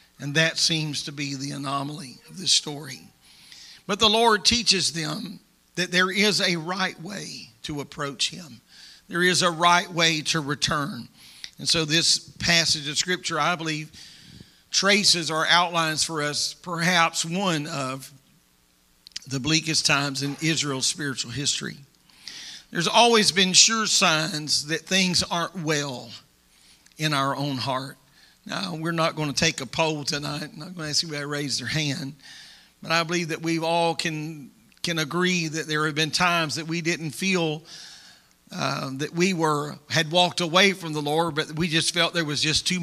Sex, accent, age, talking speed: male, American, 50-69, 170 wpm